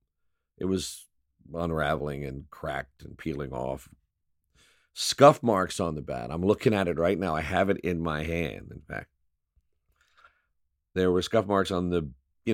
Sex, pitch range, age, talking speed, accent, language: male, 75-95 Hz, 50-69, 165 wpm, American, English